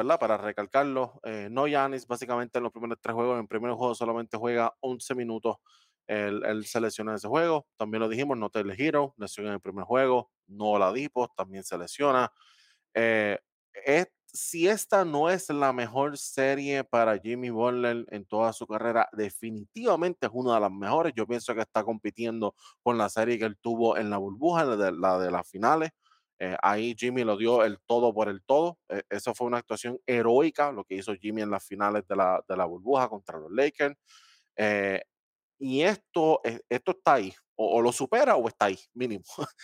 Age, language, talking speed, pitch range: 20-39, Spanish, 195 wpm, 105-125 Hz